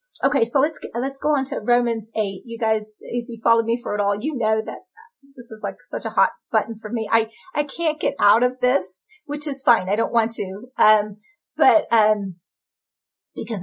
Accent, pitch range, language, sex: American, 220-295 Hz, English, female